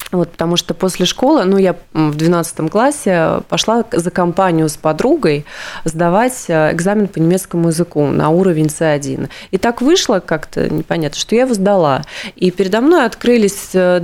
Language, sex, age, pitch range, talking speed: Russian, female, 20-39, 170-220 Hz, 150 wpm